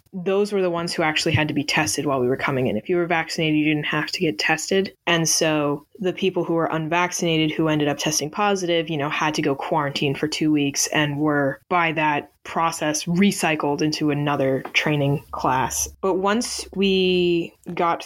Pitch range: 150-175 Hz